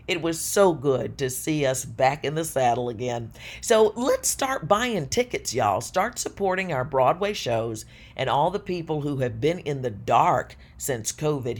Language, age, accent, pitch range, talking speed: English, 50-69, American, 125-175 Hz, 180 wpm